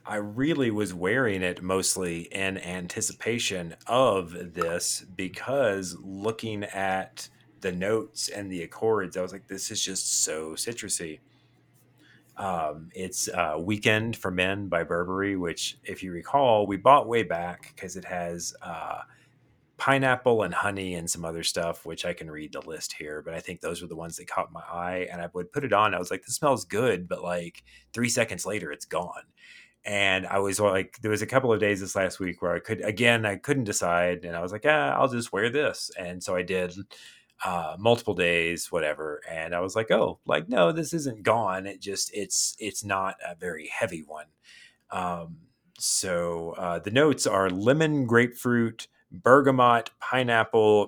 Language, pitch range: English, 90-110 Hz